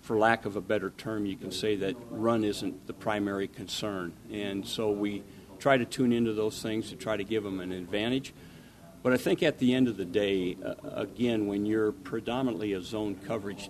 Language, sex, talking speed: English, male, 205 wpm